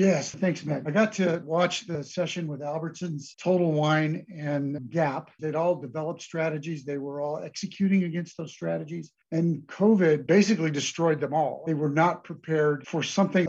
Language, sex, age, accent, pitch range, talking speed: English, male, 50-69, American, 150-175 Hz, 170 wpm